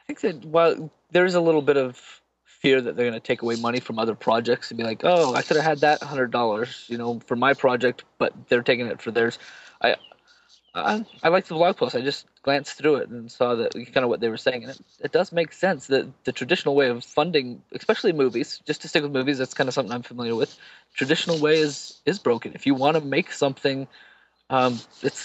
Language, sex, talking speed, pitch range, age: English, male, 240 wpm, 125-160 Hz, 20-39